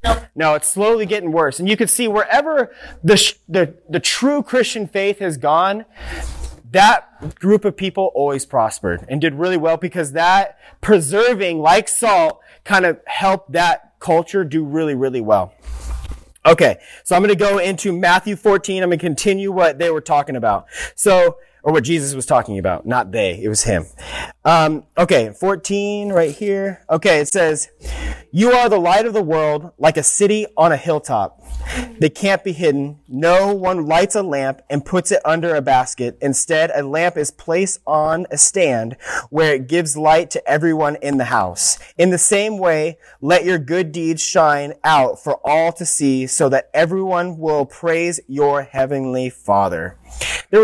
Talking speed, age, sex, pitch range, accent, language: 175 wpm, 30-49, male, 145-195 Hz, American, English